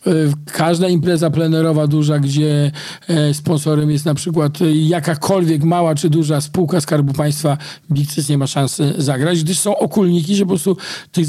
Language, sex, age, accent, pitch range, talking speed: Polish, male, 50-69, native, 150-170 Hz, 150 wpm